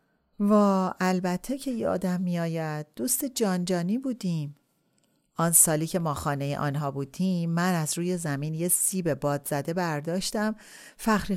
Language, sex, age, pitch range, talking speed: Persian, female, 40-59, 145-190 Hz, 150 wpm